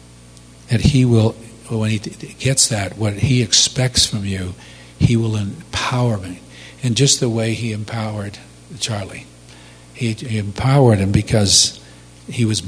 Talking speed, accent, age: 135 wpm, American, 50-69